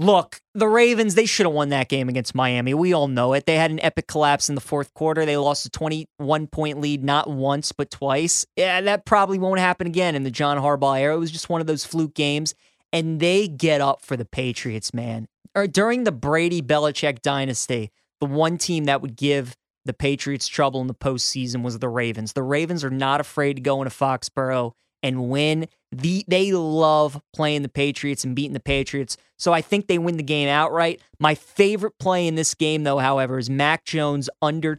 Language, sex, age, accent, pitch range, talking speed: English, male, 20-39, American, 135-160 Hz, 205 wpm